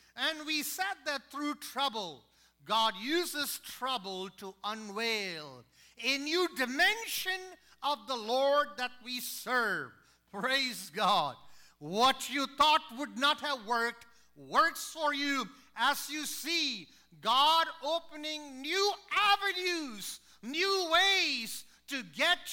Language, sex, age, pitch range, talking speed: English, male, 50-69, 210-350 Hz, 115 wpm